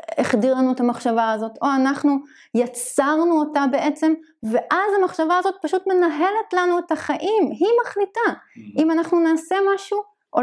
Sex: female